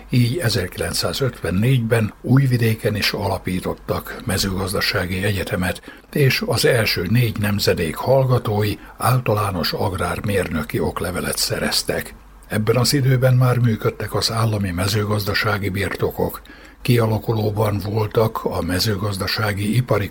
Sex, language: male, Hungarian